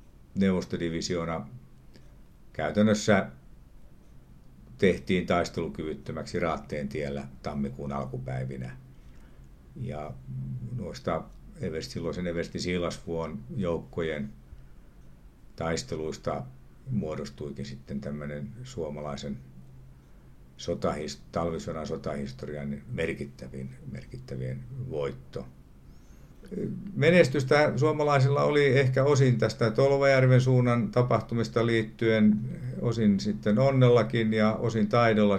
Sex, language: male, Finnish